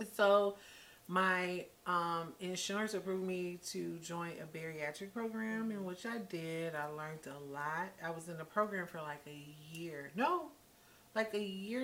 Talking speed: 160 wpm